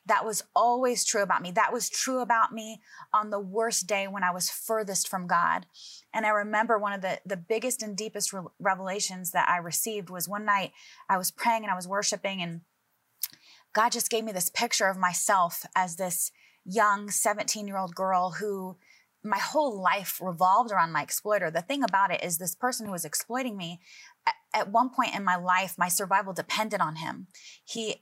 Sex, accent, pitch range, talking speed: female, American, 180-215 Hz, 195 wpm